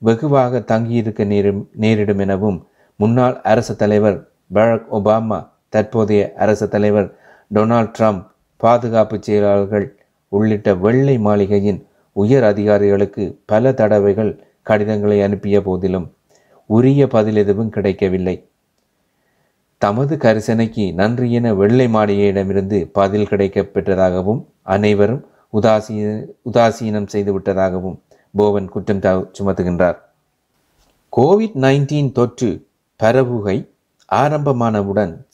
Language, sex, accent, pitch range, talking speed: Tamil, male, native, 100-115 Hz, 85 wpm